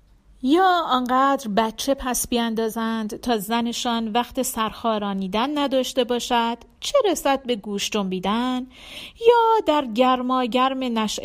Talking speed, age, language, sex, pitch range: 110 wpm, 40-59, Persian, female, 210-275 Hz